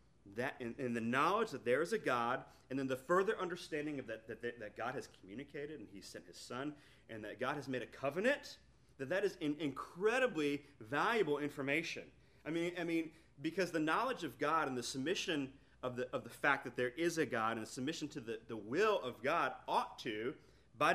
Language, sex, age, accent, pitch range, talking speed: English, male, 30-49, American, 125-165 Hz, 215 wpm